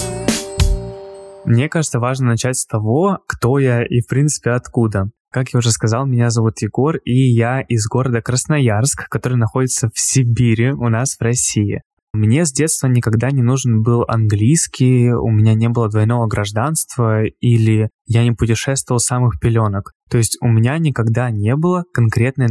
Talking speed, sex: 160 wpm, male